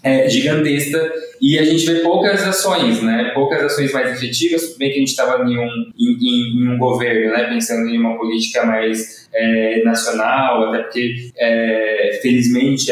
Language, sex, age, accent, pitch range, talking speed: Portuguese, male, 20-39, Brazilian, 115-135 Hz, 165 wpm